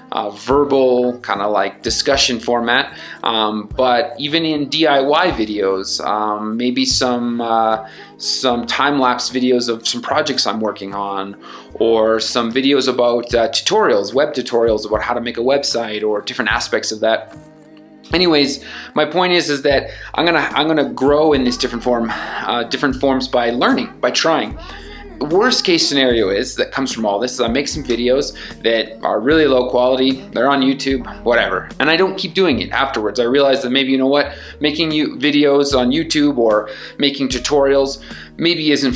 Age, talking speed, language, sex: 30-49, 175 wpm, English, male